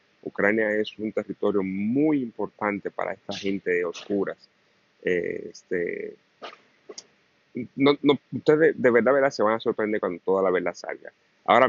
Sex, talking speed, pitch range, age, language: male, 145 wpm, 95-145 Hz, 30-49, Spanish